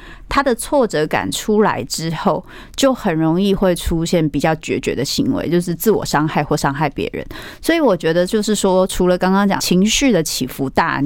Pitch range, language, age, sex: 160-195 Hz, Chinese, 30-49, female